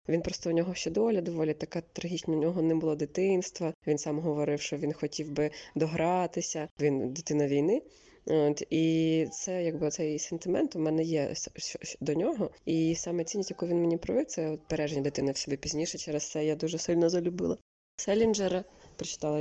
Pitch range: 150-170 Hz